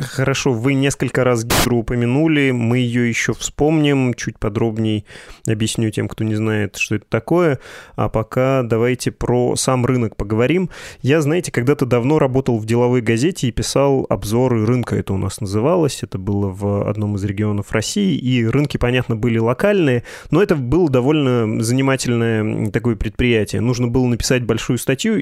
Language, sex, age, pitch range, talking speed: Russian, male, 20-39, 110-130 Hz, 155 wpm